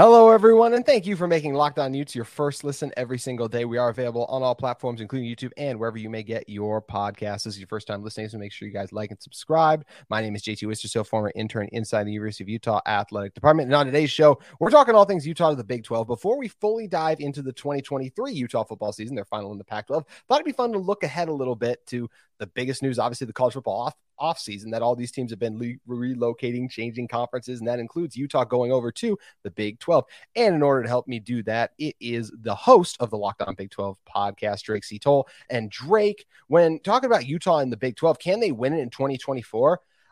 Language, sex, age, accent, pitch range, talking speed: English, male, 30-49, American, 115-155 Hz, 245 wpm